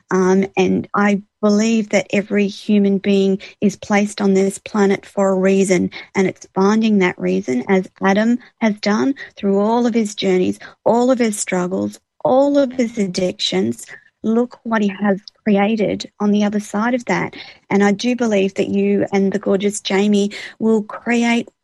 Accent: Australian